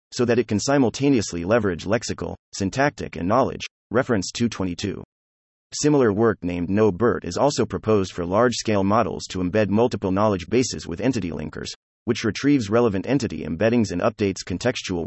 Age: 30-49